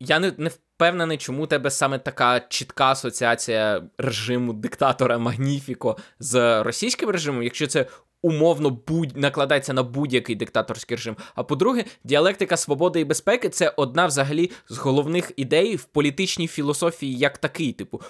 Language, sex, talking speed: Ukrainian, male, 145 wpm